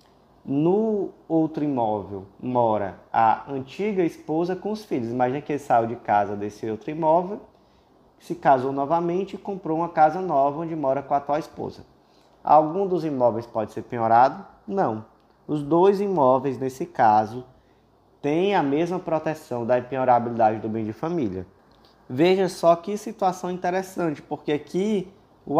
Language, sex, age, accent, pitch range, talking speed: Portuguese, male, 20-39, Brazilian, 125-180 Hz, 150 wpm